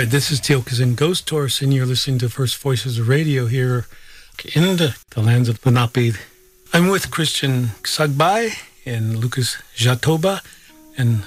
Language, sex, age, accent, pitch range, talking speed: English, male, 40-59, American, 115-135 Hz, 145 wpm